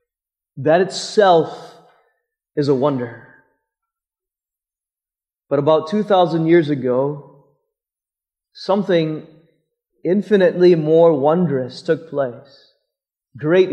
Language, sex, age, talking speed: English, male, 30-49, 75 wpm